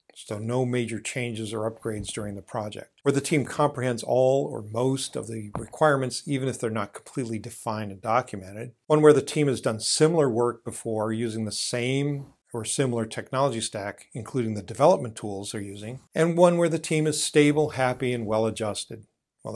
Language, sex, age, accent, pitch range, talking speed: English, male, 50-69, American, 115-140 Hz, 185 wpm